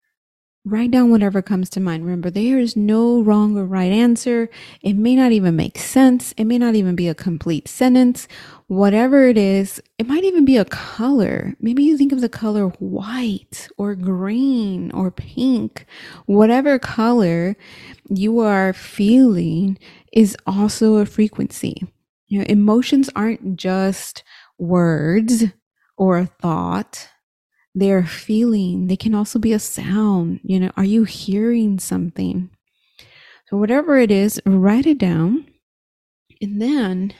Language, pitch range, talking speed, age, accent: English, 190-245 Hz, 145 wpm, 30-49, American